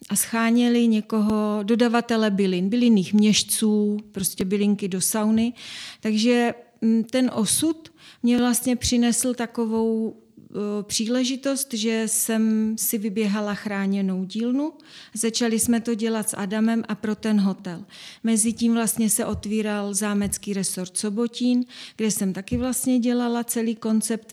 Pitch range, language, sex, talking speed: 200-225 Hz, Czech, female, 125 wpm